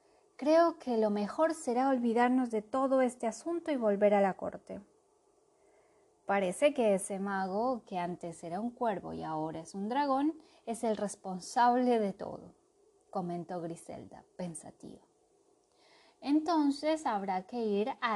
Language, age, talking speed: Spanish, 20-39, 140 wpm